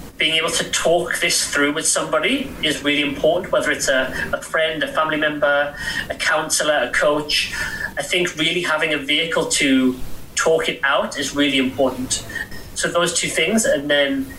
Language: English